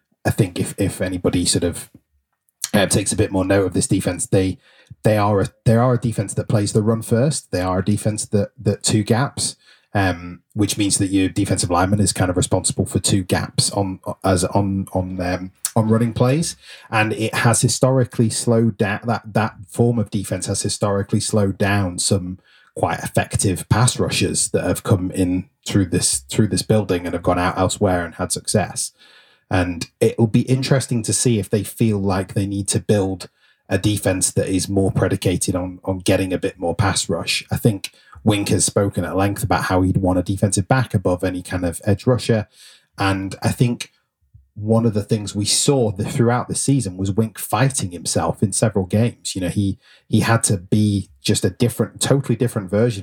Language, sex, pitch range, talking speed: English, male, 95-115 Hz, 200 wpm